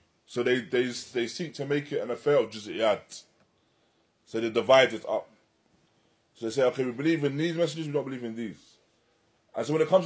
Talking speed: 215 wpm